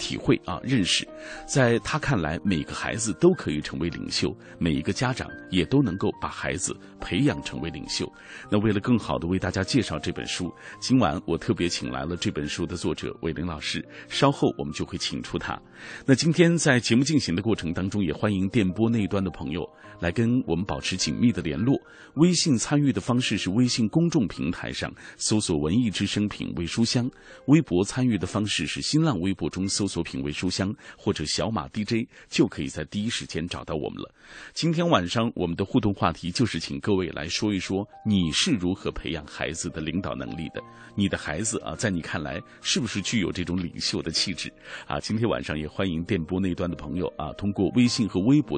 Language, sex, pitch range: Chinese, male, 90-125 Hz